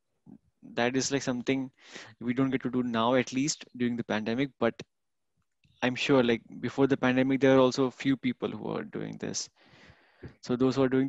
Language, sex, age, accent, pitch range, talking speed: Hindi, male, 20-39, native, 120-135 Hz, 195 wpm